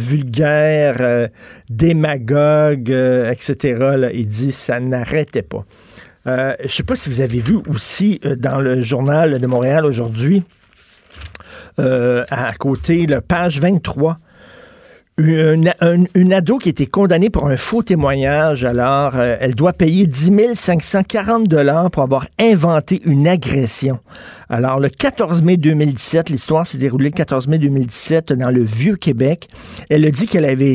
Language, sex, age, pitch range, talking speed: French, male, 50-69, 130-170 Hz, 145 wpm